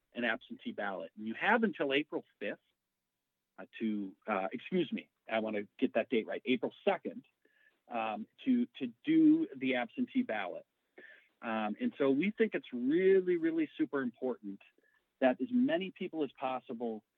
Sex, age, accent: male, 40-59, American